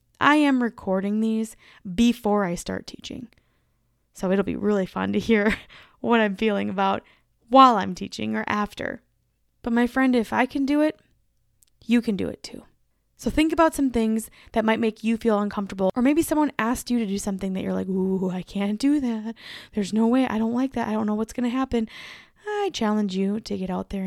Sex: female